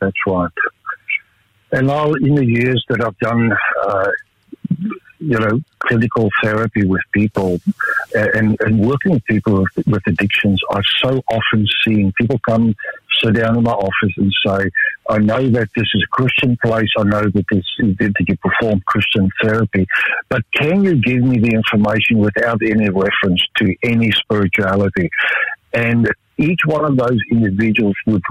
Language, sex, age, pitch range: English, male, 60-79, 100-120 Hz